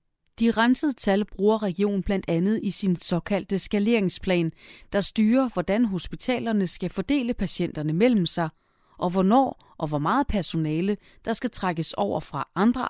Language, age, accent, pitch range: Danish, 30-49, native, 155-225 Hz